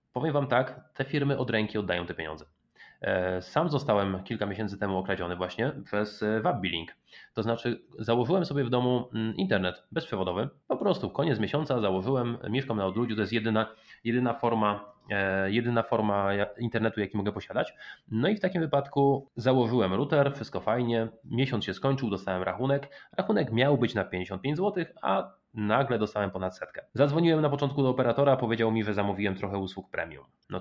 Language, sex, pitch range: Polish, male, 100-135 Hz